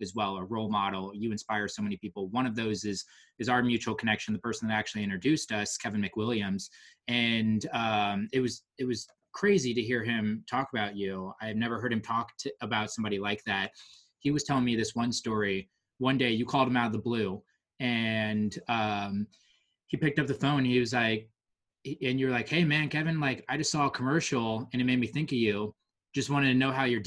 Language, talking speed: English, 225 wpm